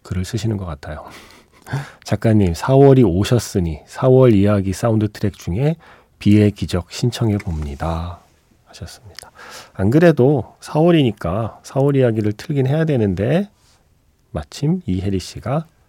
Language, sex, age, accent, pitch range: Korean, male, 40-59, native, 90-125 Hz